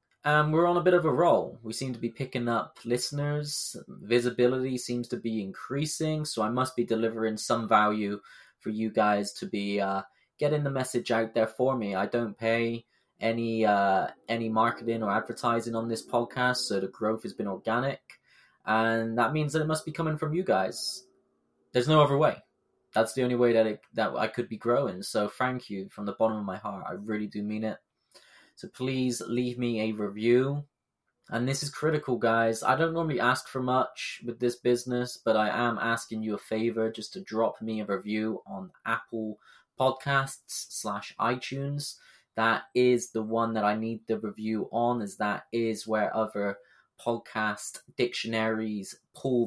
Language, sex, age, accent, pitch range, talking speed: English, male, 20-39, British, 110-130 Hz, 185 wpm